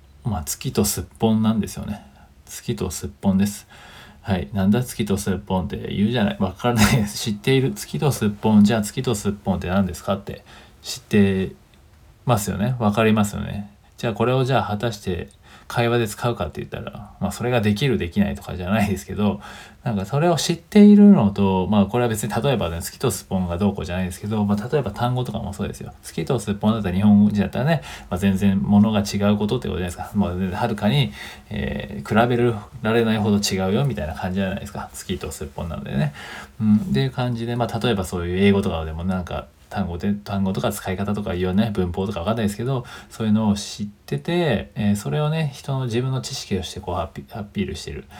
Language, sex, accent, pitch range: Japanese, male, native, 95-115 Hz